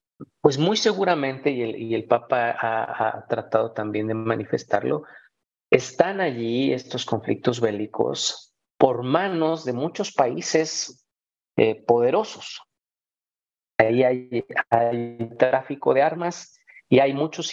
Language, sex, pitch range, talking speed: Spanish, male, 105-130 Hz, 120 wpm